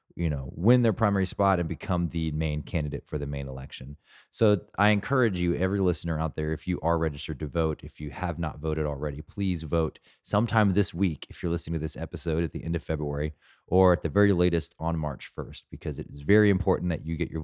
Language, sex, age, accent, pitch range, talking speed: English, male, 30-49, American, 80-100 Hz, 235 wpm